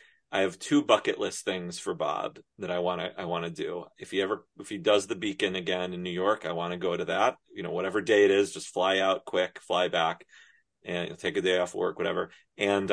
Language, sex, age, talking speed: English, male, 30-49, 250 wpm